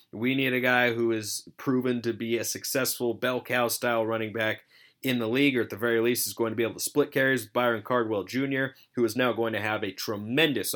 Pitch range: 115-140 Hz